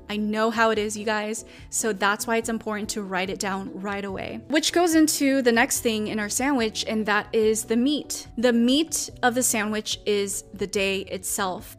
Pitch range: 205-230 Hz